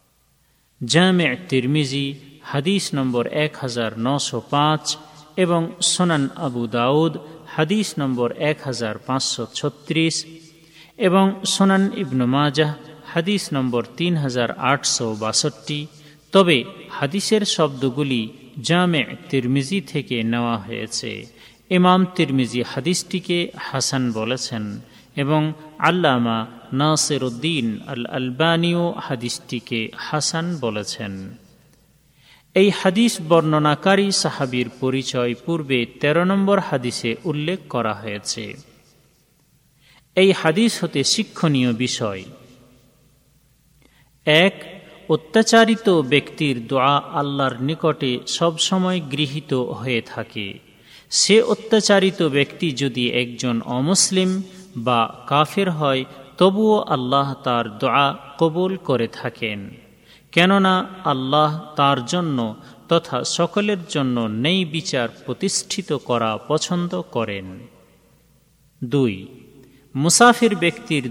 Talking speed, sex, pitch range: 85 wpm, male, 125-170 Hz